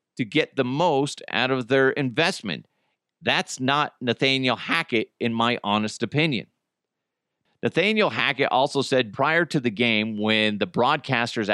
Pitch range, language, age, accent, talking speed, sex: 115-150 Hz, English, 40-59, American, 140 wpm, male